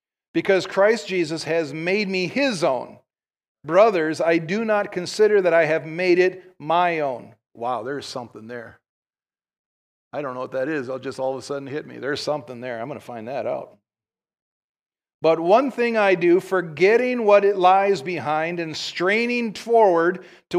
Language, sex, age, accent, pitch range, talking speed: English, male, 40-59, American, 155-195 Hz, 180 wpm